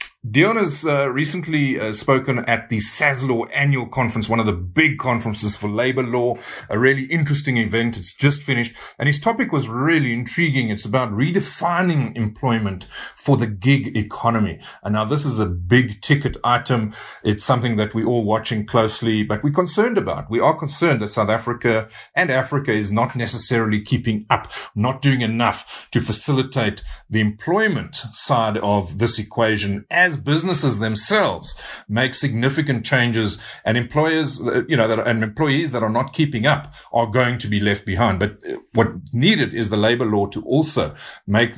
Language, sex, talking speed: English, male, 170 wpm